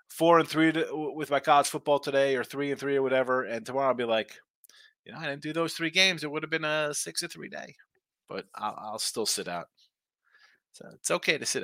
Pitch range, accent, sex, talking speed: 120-190 Hz, American, male, 245 wpm